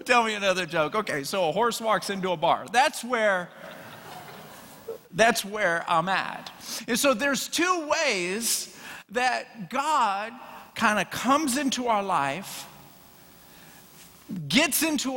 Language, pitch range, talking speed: English, 190-280 Hz, 130 wpm